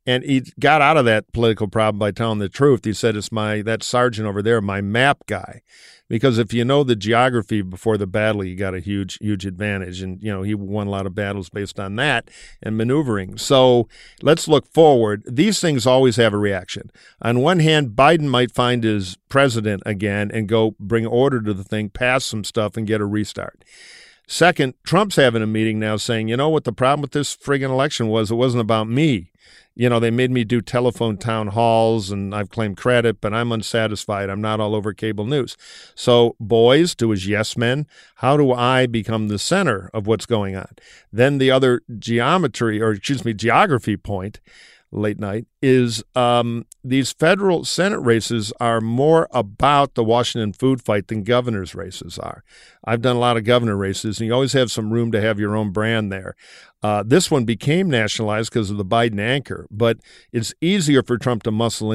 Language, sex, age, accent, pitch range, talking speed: English, male, 50-69, American, 105-125 Hz, 200 wpm